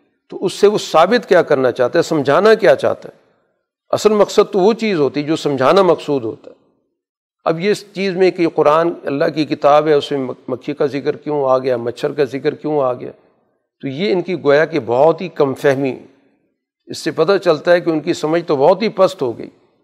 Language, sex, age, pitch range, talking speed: Urdu, male, 50-69, 145-185 Hz, 225 wpm